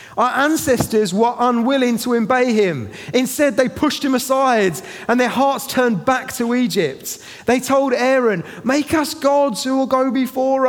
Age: 30-49